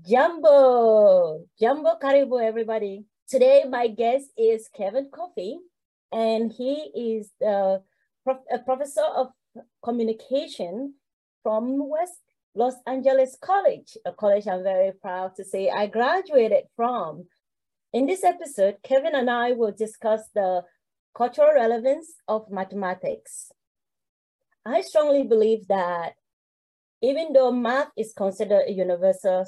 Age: 30-49